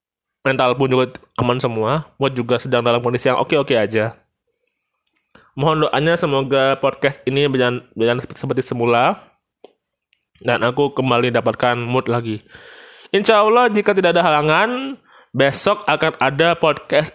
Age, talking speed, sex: 20-39, 130 wpm, male